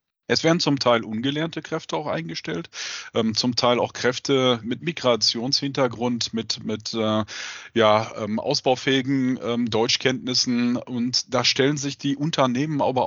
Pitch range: 120-150 Hz